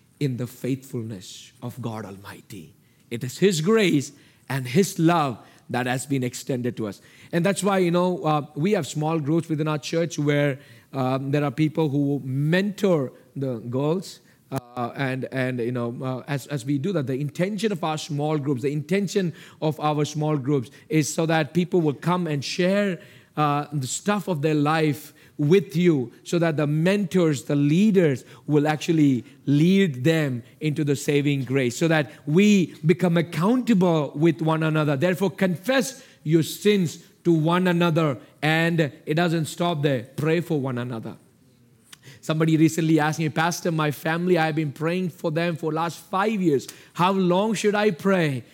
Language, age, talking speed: English, 50-69, 175 wpm